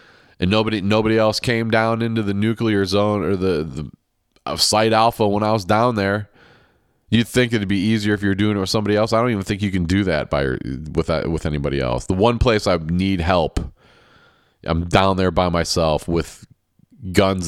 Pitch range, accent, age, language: 85-110 Hz, American, 30-49, English